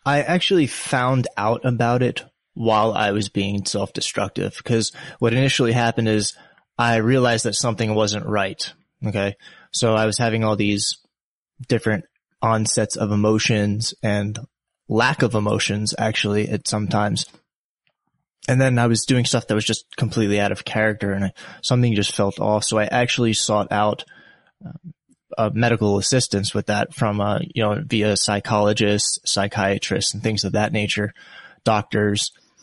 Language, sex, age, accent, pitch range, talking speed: English, male, 20-39, American, 105-120 Hz, 155 wpm